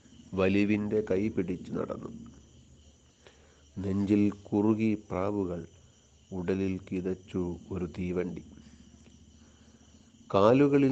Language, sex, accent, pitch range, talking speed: Malayalam, male, native, 95-115 Hz, 65 wpm